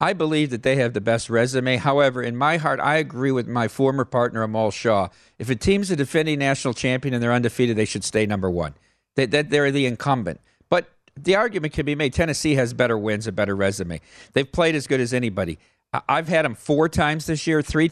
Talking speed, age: 220 wpm, 50-69